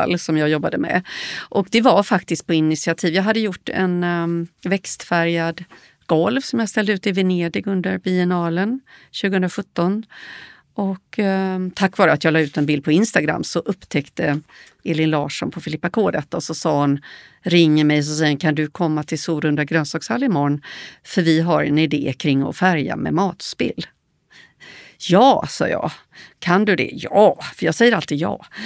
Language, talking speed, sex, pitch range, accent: Swedish, 170 wpm, female, 155-205 Hz, native